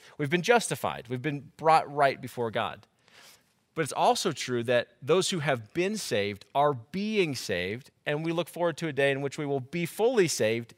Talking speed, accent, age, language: 200 wpm, American, 30-49, English